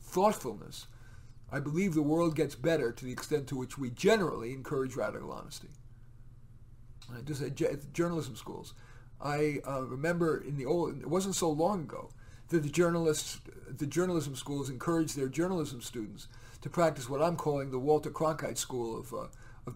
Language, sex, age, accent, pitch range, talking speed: English, male, 50-69, American, 125-165 Hz, 175 wpm